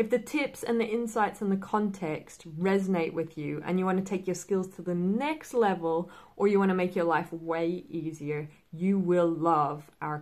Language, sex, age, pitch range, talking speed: English, female, 20-39, 160-195 Hz, 210 wpm